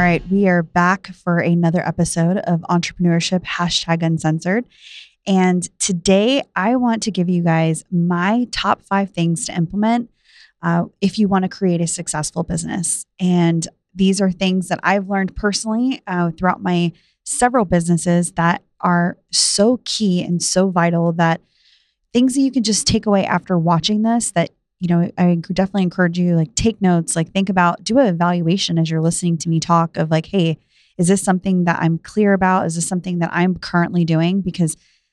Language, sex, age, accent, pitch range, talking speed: English, female, 20-39, American, 165-190 Hz, 180 wpm